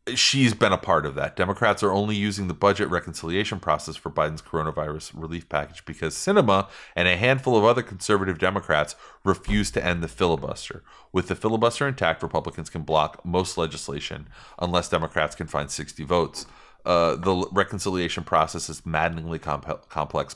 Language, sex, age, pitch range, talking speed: English, male, 30-49, 80-95 Hz, 160 wpm